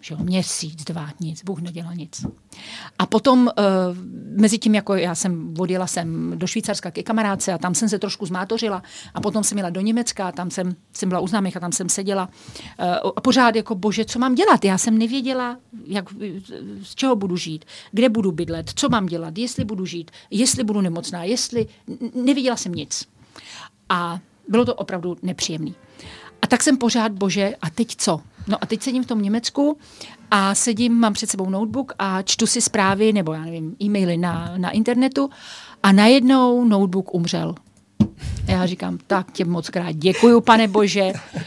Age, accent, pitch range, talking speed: 40-59, native, 185-235 Hz, 185 wpm